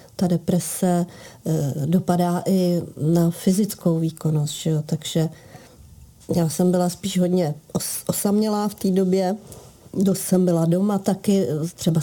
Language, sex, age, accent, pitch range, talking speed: Czech, female, 40-59, native, 175-210 Hz, 130 wpm